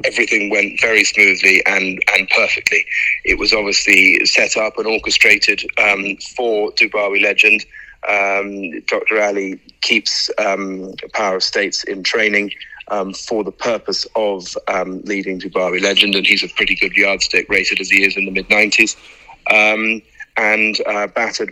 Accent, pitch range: British, 95-110 Hz